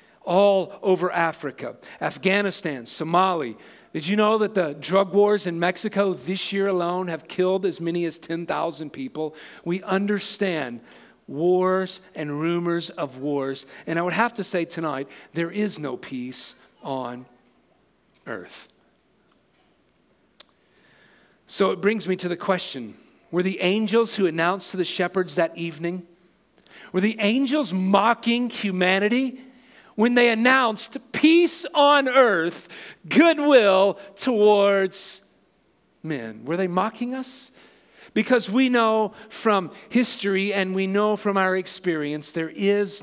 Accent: American